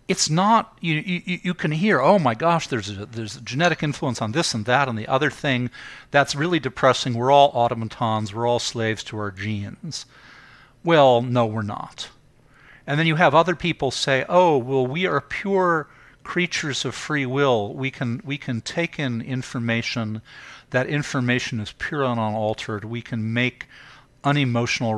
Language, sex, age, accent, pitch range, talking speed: English, male, 50-69, American, 115-145 Hz, 175 wpm